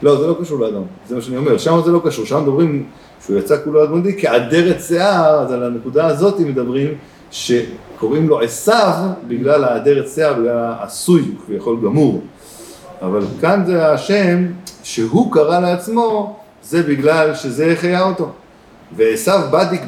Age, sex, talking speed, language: 50-69, male, 150 wpm, Hebrew